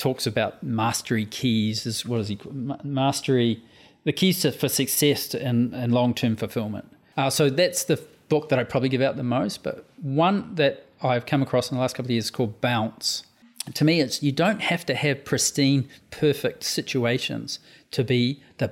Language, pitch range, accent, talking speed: English, 120-145 Hz, Australian, 190 wpm